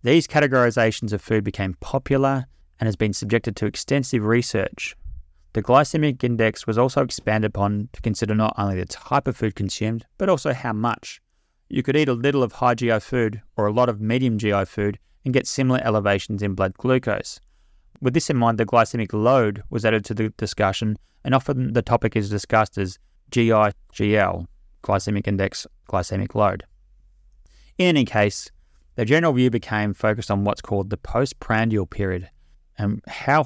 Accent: Australian